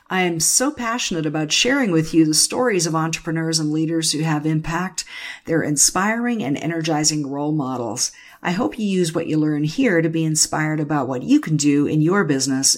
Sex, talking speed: female, 195 wpm